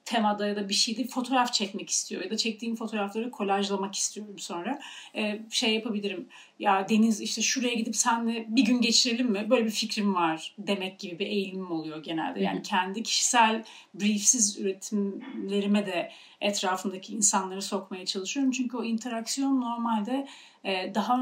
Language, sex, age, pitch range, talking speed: Turkish, female, 40-59, 195-235 Hz, 150 wpm